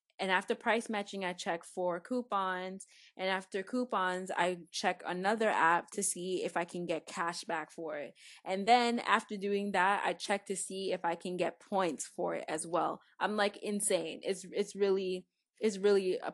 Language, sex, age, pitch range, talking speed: English, female, 20-39, 170-195 Hz, 190 wpm